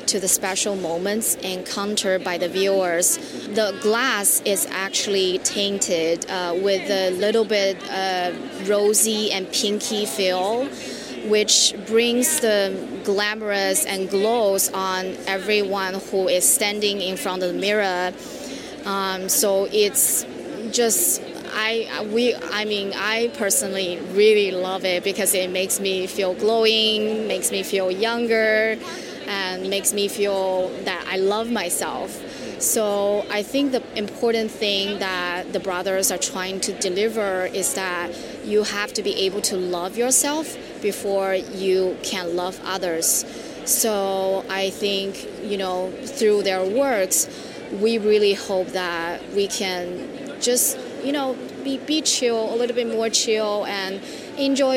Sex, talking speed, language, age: female, 135 wpm, English, 20-39